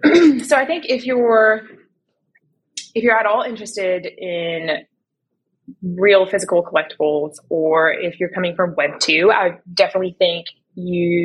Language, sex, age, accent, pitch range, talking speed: English, female, 20-39, American, 165-200 Hz, 135 wpm